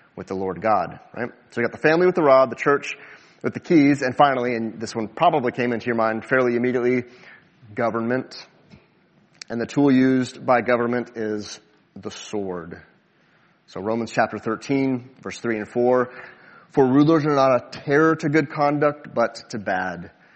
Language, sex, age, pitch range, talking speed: English, male, 30-49, 105-145 Hz, 175 wpm